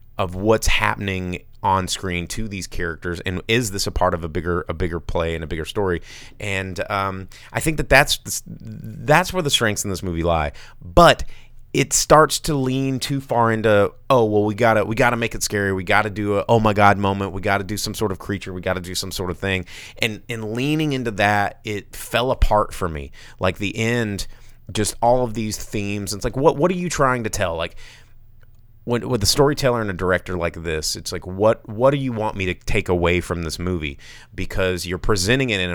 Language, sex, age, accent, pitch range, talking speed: English, male, 30-49, American, 90-115 Hz, 220 wpm